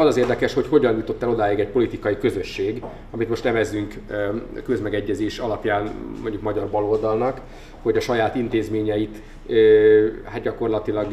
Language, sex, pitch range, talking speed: Hungarian, male, 105-125 Hz, 130 wpm